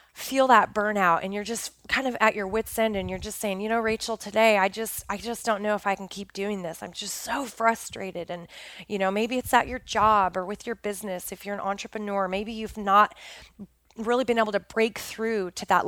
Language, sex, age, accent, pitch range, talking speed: English, female, 20-39, American, 190-240 Hz, 240 wpm